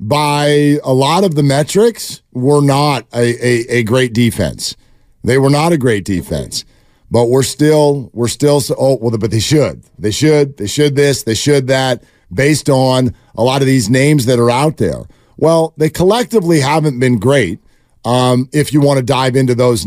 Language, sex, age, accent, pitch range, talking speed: English, male, 50-69, American, 125-165 Hz, 190 wpm